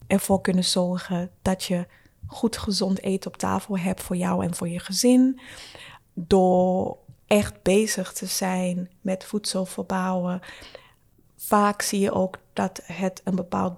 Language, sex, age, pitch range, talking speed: Dutch, female, 20-39, 185-215 Hz, 145 wpm